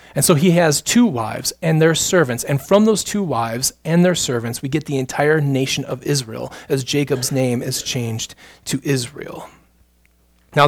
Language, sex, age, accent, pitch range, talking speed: English, male, 30-49, American, 130-170 Hz, 180 wpm